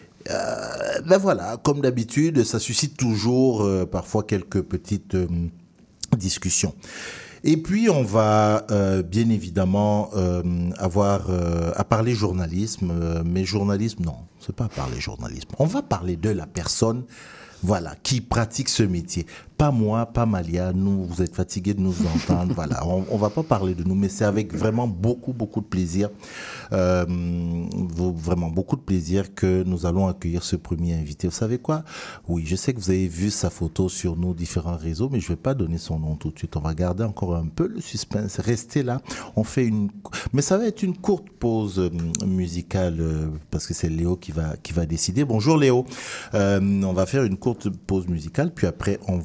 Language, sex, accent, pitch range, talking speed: French, male, French, 90-115 Hz, 190 wpm